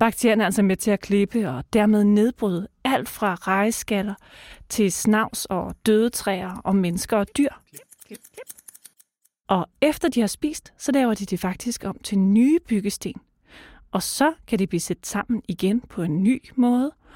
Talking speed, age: 170 wpm, 40-59